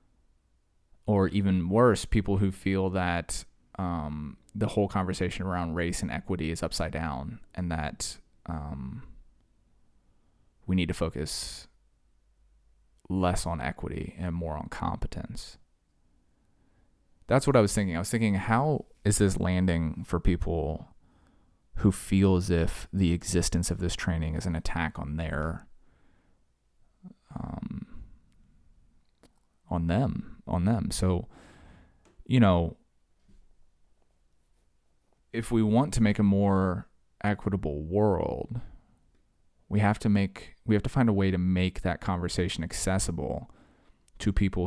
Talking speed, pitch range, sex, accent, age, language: 125 wpm, 80-100 Hz, male, American, 20-39, English